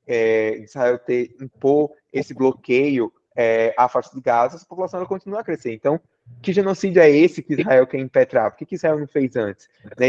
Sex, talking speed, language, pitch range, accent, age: male, 210 wpm, Portuguese, 125-175 Hz, Brazilian, 20-39